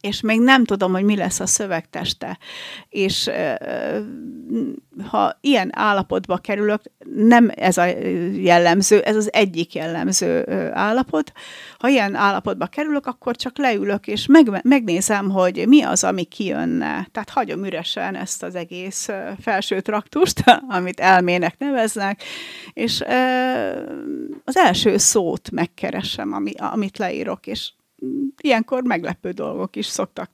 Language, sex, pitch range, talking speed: Hungarian, female, 185-255 Hz, 120 wpm